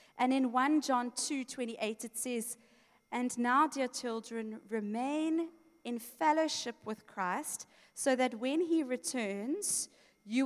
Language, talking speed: English, 130 wpm